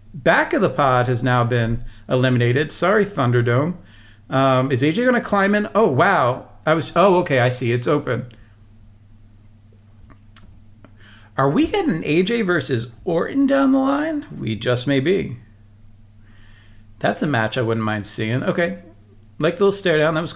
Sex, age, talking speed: male, 40-59, 160 wpm